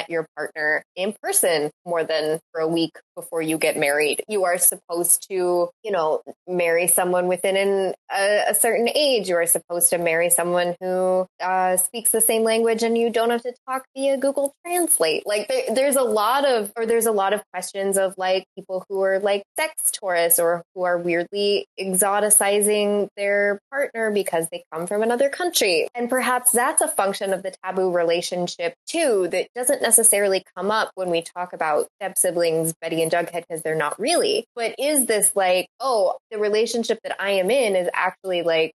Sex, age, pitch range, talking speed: female, 20-39, 175-225 Hz, 190 wpm